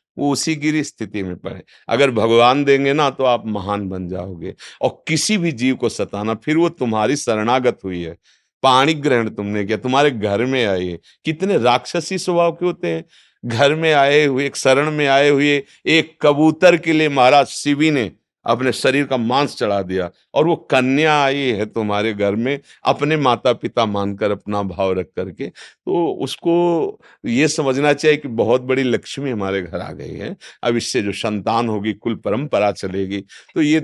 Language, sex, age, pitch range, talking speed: Hindi, male, 50-69, 105-145 Hz, 185 wpm